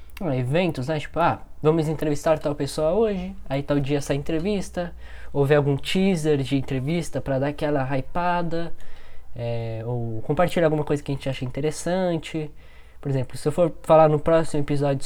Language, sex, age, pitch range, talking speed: Portuguese, male, 10-29, 125-165 Hz, 175 wpm